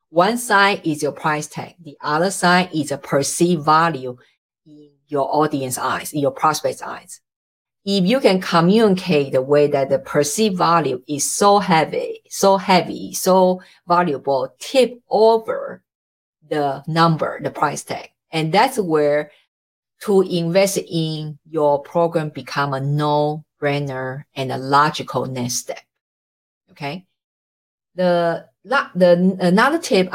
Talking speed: 130 wpm